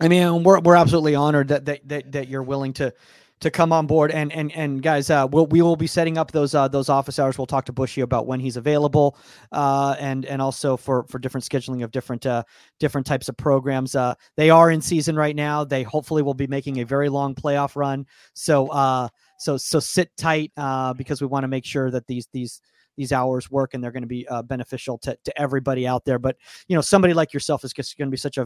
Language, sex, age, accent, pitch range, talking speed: English, male, 30-49, American, 130-155 Hz, 245 wpm